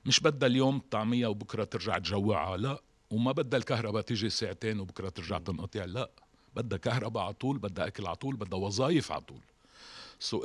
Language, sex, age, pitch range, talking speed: Arabic, male, 50-69, 105-135 Hz, 155 wpm